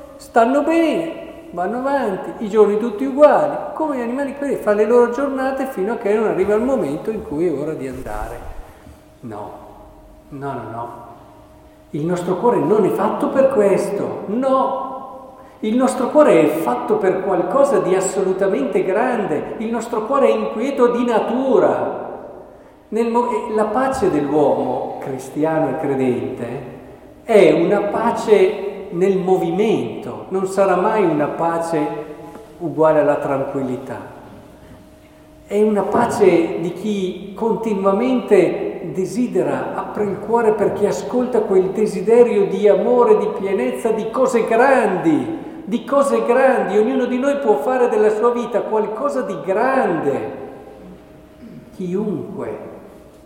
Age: 50-69